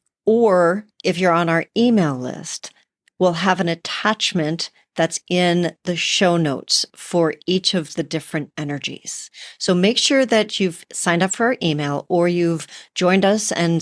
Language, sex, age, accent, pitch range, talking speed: English, female, 40-59, American, 155-190 Hz, 160 wpm